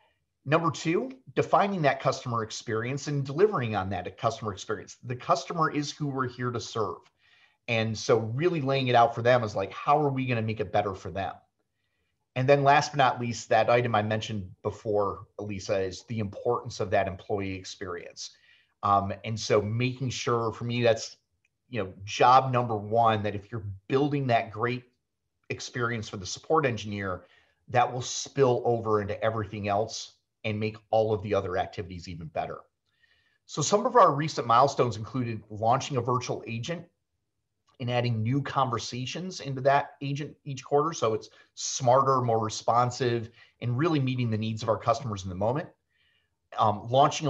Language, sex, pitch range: English, male, 110-135 Hz